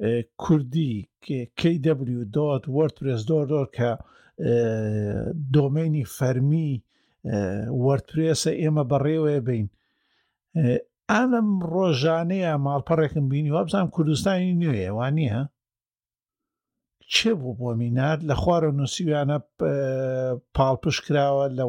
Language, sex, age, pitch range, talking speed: Arabic, male, 50-69, 125-170 Hz, 95 wpm